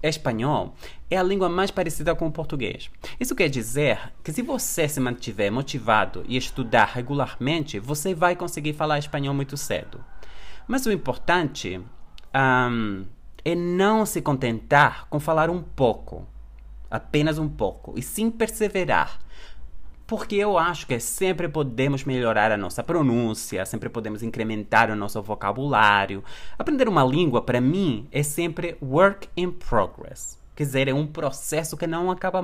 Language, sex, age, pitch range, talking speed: Portuguese, male, 20-39, 115-175 Hz, 145 wpm